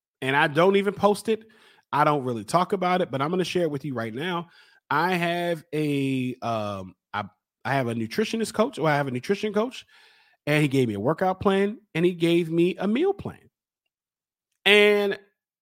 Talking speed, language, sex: 190 wpm, English, male